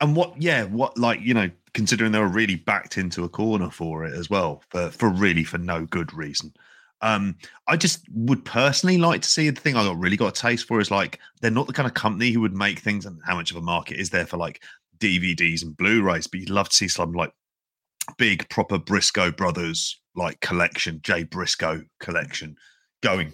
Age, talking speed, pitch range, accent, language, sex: 30-49, 220 wpm, 85-105 Hz, British, English, male